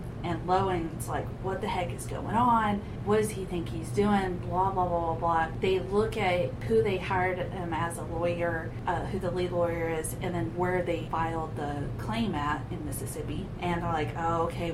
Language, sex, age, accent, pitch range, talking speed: English, female, 30-49, American, 125-180 Hz, 210 wpm